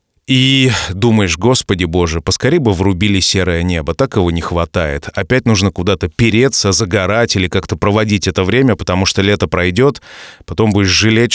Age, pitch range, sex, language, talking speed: 30-49, 95-120 Hz, male, Russian, 160 wpm